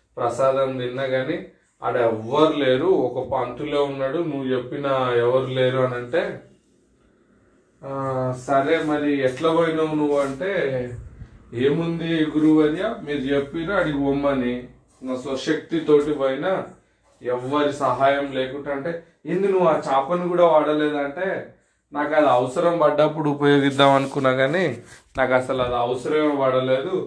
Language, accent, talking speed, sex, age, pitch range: Telugu, native, 120 wpm, male, 30-49, 125-150 Hz